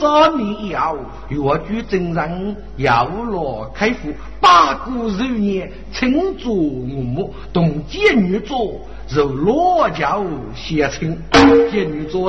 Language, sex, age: Chinese, male, 50-69